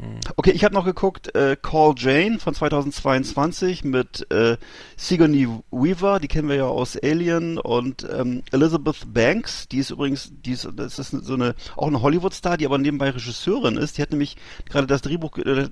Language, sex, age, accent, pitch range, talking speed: German, male, 40-59, German, 130-160 Hz, 185 wpm